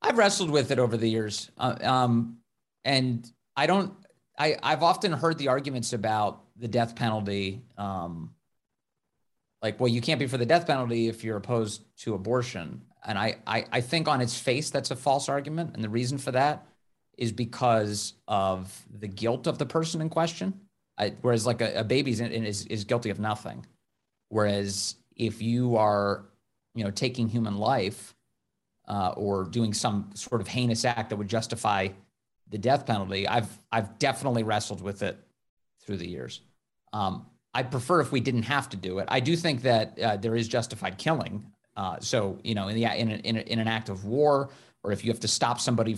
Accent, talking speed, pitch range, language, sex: American, 190 wpm, 105-130 Hz, English, male